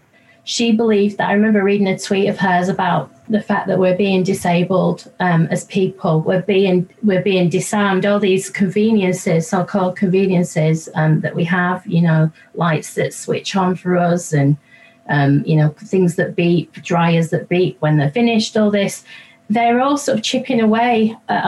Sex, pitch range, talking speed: female, 180-225 Hz, 180 wpm